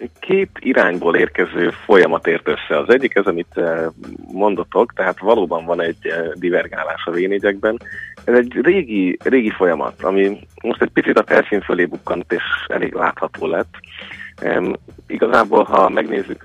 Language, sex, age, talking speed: Hungarian, male, 30-49, 140 wpm